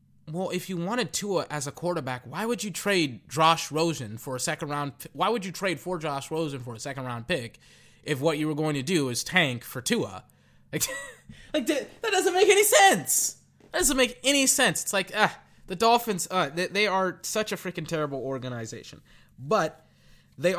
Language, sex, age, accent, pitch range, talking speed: English, male, 20-39, American, 120-165 Hz, 205 wpm